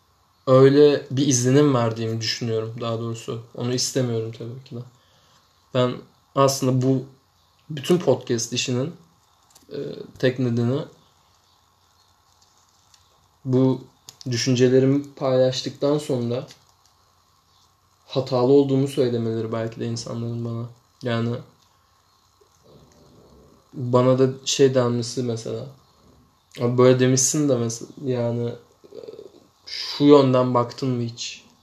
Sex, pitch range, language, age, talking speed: male, 110-130 Hz, Turkish, 20-39, 90 wpm